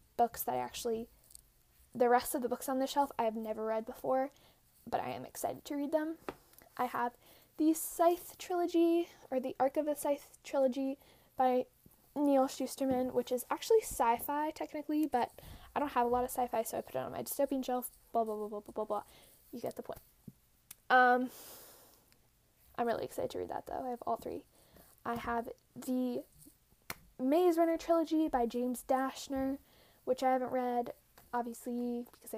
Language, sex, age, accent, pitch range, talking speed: English, female, 10-29, American, 240-285 Hz, 180 wpm